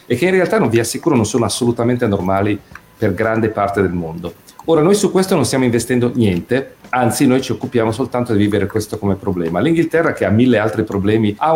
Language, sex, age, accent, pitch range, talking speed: Italian, male, 40-59, native, 110-145 Hz, 215 wpm